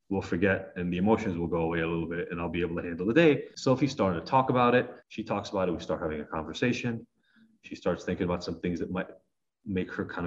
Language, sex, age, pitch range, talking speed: English, male, 30-49, 95-130 Hz, 265 wpm